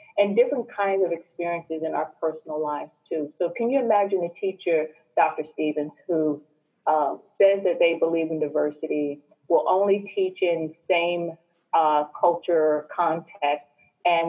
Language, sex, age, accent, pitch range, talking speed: English, female, 30-49, American, 160-205 Hz, 145 wpm